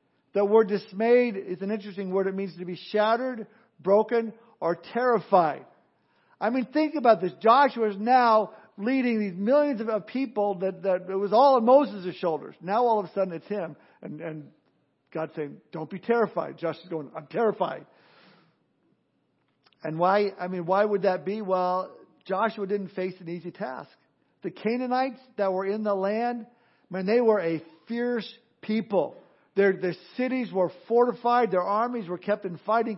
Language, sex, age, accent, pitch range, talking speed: English, male, 50-69, American, 185-230 Hz, 170 wpm